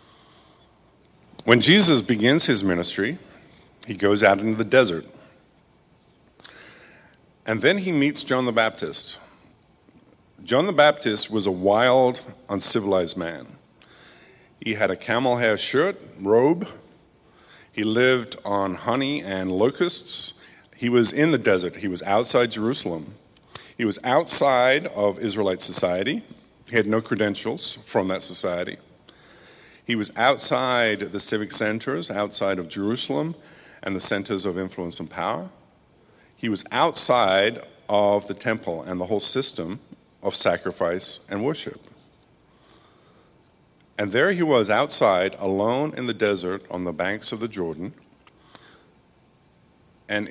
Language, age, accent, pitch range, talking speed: English, 50-69, American, 95-125 Hz, 130 wpm